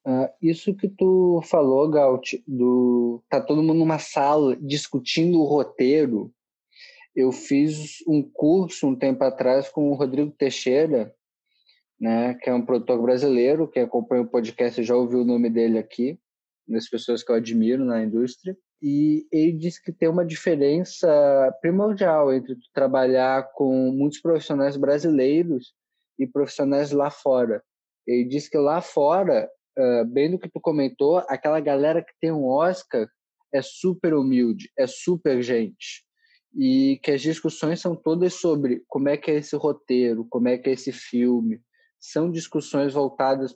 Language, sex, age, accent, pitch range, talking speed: Portuguese, male, 20-39, Brazilian, 130-165 Hz, 155 wpm